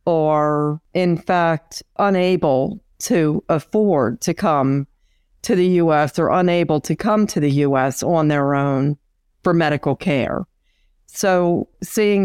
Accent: American